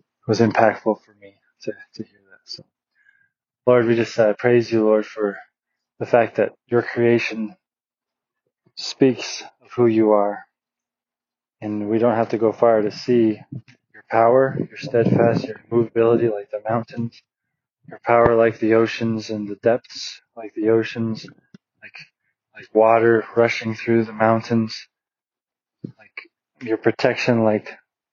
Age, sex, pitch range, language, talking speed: 20-39, male, 110-120 Hz, English, 145 wpm